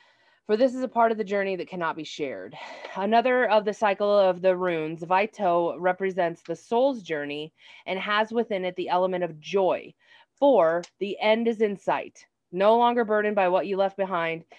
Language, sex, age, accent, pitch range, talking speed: English, female, 20-39, American, 180-225 Hz, 190 wpm